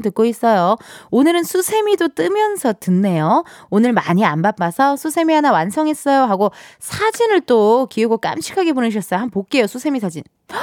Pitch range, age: 190-310 Hz, 20-39